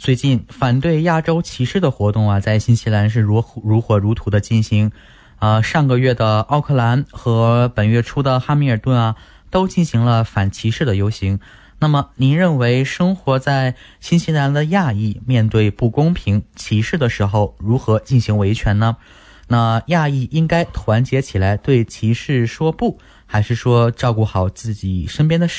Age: 20-39